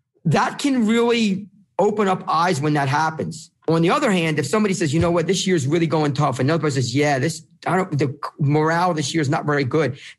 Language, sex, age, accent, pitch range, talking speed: English, male, 40-59, American, 145-190 Hz, 245 wpm